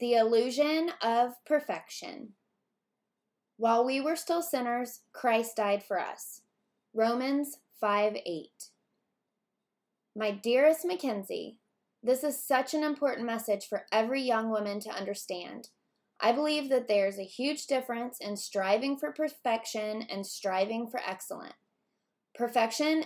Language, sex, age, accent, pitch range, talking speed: English, female, 20-39, American, 210-260 Hz, 120 wpm